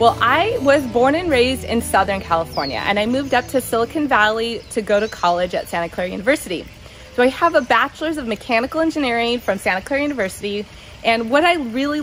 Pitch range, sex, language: 200-255 Hz, female, English